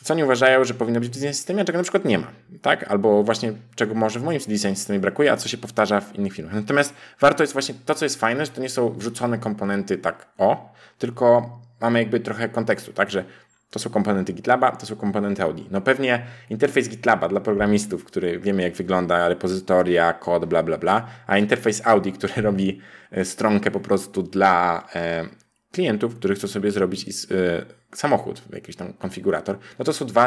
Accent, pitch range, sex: native, 100-125 Hz, male